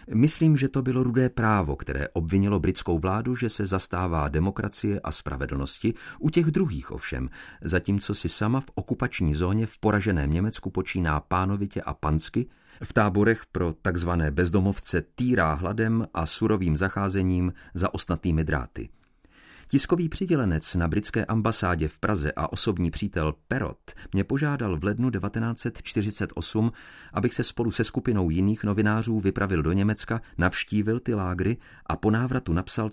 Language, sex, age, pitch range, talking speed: Czech, male, 40-59, 85-115 Hz, 145 wpm